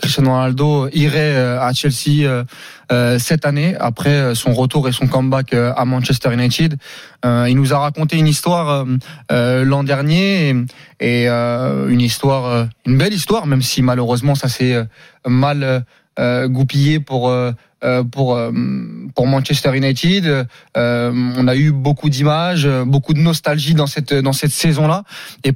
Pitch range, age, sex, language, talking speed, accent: 130-155 Hz, 20-39, male, French, 130 wpm, French